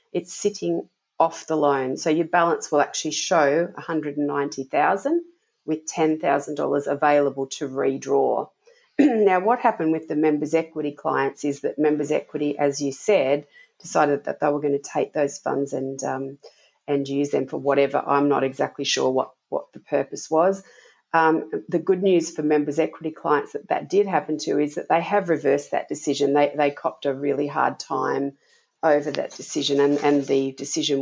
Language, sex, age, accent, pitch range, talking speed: English, female, 40-59, Australian, 145-175 Hz, 175 wpm